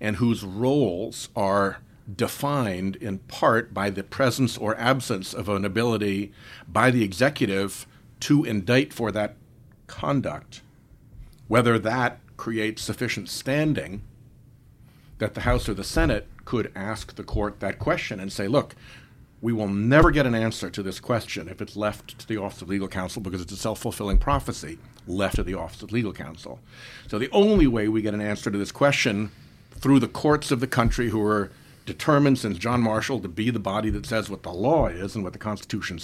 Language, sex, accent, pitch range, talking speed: English, male, American, 100-125 Hz, 185 wpm